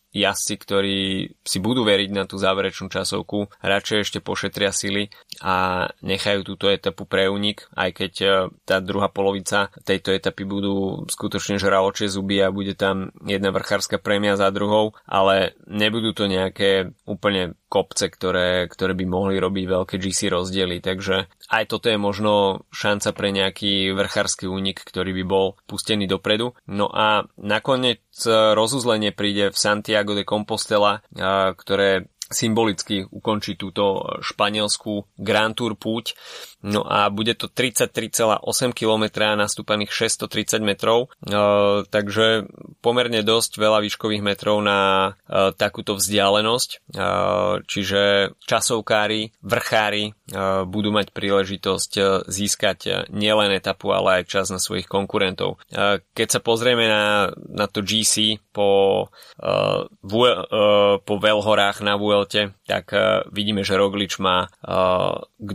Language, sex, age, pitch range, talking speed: Slovak, male, 20-39, 95-105 Hz, 125 wpm